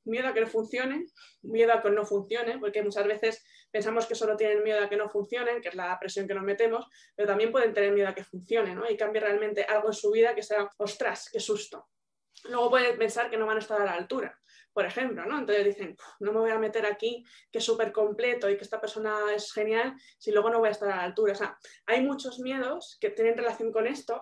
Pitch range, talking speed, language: 210-245 Hz, 250 wpm, Spanish